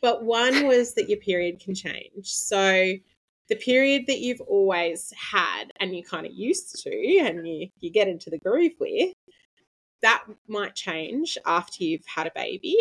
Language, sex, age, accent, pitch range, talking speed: English, female, 20-39, Australian, 170-235 Hz, 175 wpm